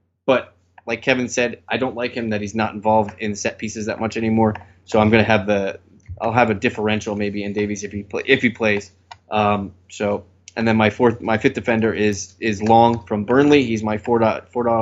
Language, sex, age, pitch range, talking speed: English, male, 20-39, 105-120 Hz, 225 wpm